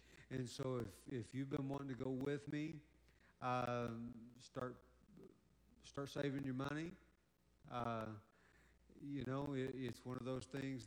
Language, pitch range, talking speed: English, 110-130 Hz, 145 wpm